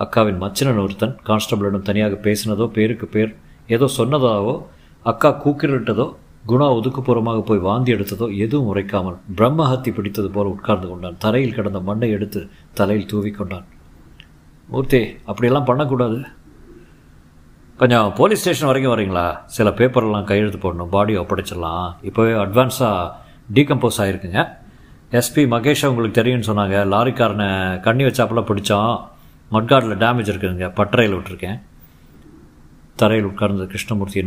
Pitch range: 95-125 Hz